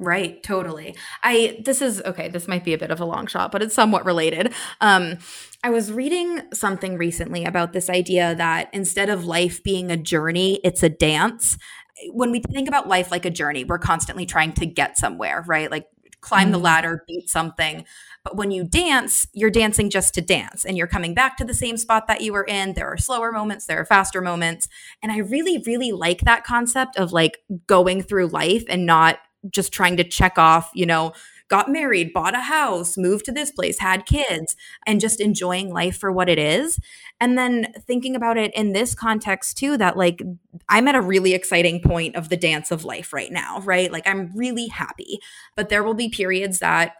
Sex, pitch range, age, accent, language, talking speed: female, 175-230 Hz, 20-39, American, English, 210 wpm